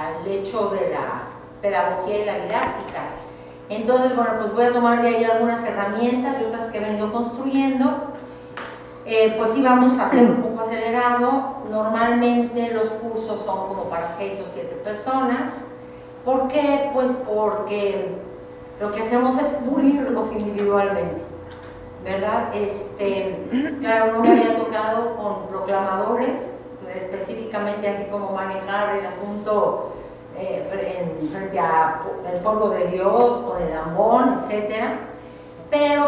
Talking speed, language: 135 wpm, Spanish